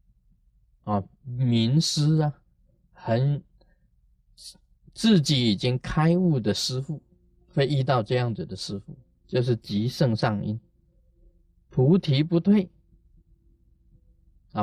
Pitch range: 105-150 Hz